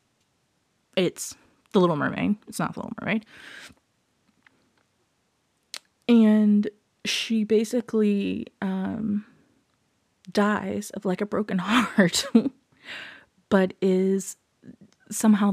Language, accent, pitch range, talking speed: English, American, 185-230 Hz, 85 wpm